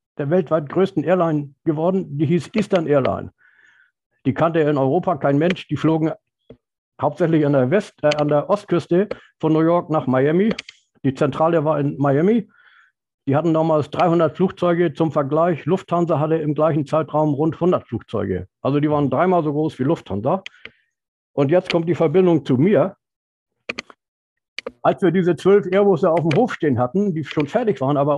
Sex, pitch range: male, 145-175 Hz